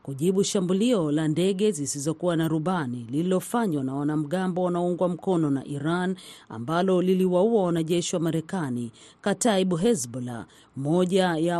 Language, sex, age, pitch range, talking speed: Swahili, female, 40-59, 155-190 Hz, 120 wpm